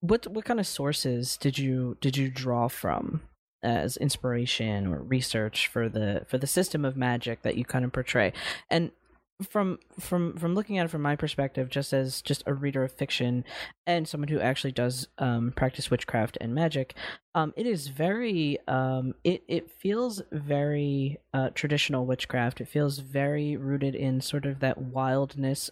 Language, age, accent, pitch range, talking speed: English, 20-39, American, 125-145 Hz, 175 wpm